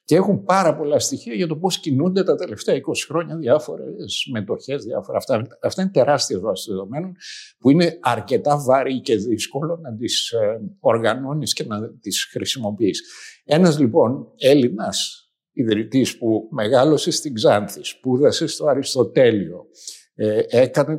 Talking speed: 135 wpm